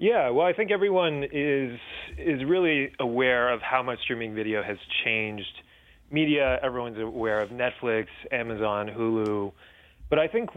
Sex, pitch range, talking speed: male, 105-135 Hz, 150 wpm